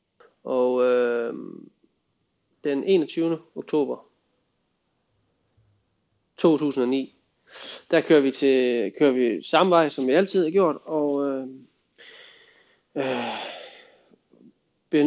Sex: male